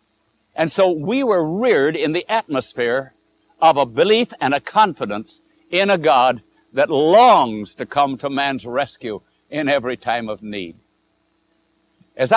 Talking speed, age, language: 145 wpm, 60-79, English